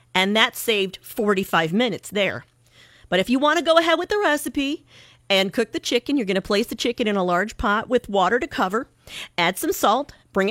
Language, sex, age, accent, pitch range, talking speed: English, female, 40-59, American, 190-250 Hz, 215 wpm